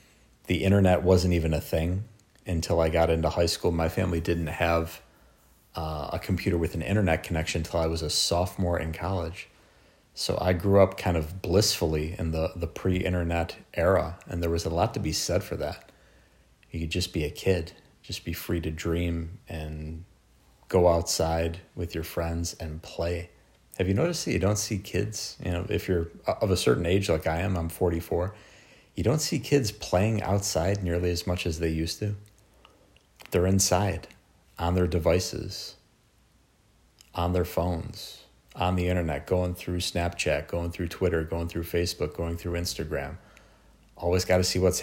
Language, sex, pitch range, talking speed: English, male, 80-95 Hz, 180 wpm